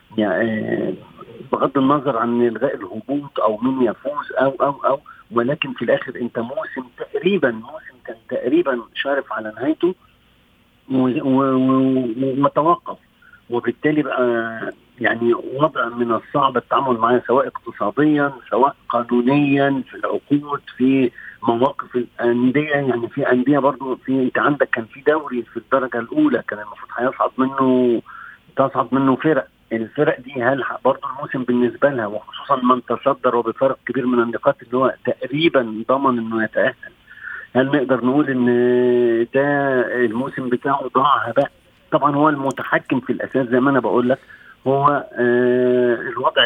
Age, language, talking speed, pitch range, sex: 50-69, Arabic, 135 wpm, 120-140 Hz, male